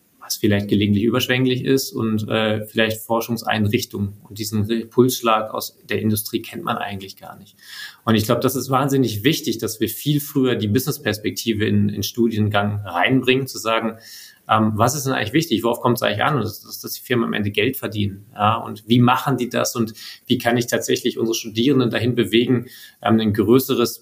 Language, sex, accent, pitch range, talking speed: German, male, German, 105-125 Hz, 185 wpm